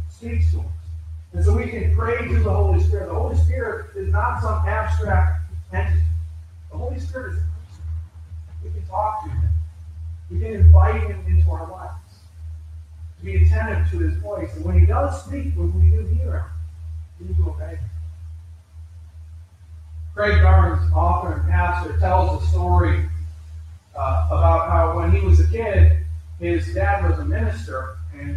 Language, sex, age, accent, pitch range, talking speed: English, male, 40-59, American, 80-85 Hz, 170 wpm